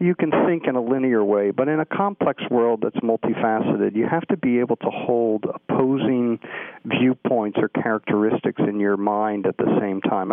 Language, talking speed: English, 185 wpm